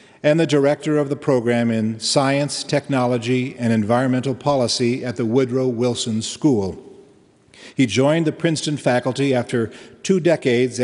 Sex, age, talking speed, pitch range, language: male, 50-69, 140 wpm, 120-145 Hz, English